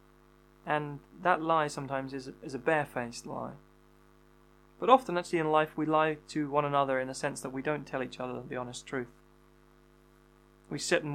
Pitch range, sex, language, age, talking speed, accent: 85-135 Hz, male, English, 20-39, 185 wpm, British